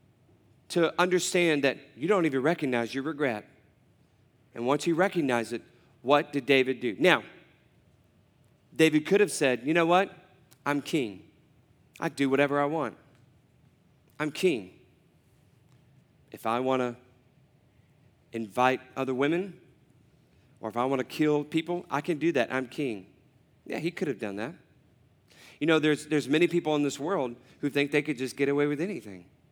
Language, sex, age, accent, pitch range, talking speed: English, male, 40-59, American, 130-155 Hz, 165 wpm